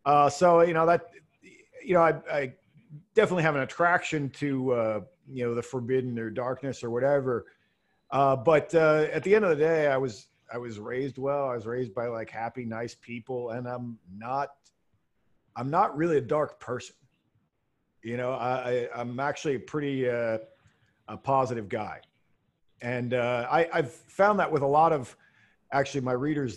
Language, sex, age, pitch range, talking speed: English, male, 40-59, 115-150 Hz, 180 wpm